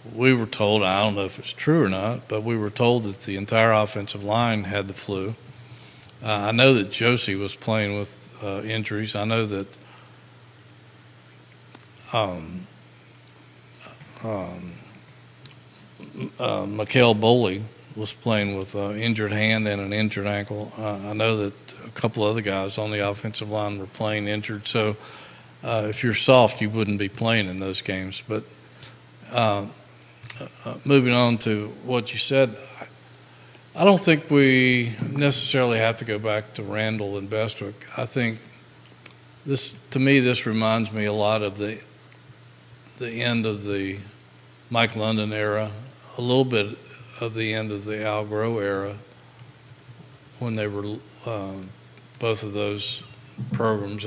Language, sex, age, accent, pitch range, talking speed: English, male, 40-59, American, 100-115 Hz, 150 wpm